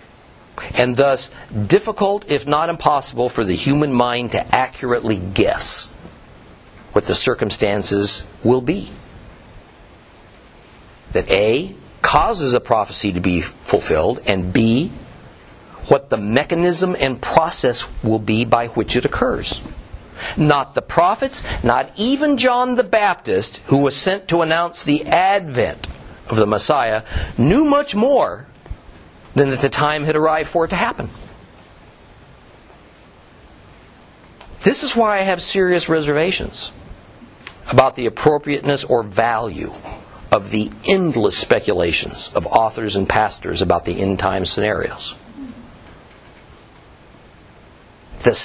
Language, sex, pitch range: English, male, 105-175 Hz